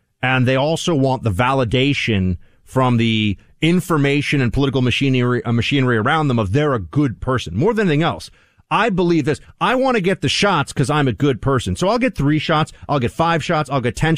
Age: 40-59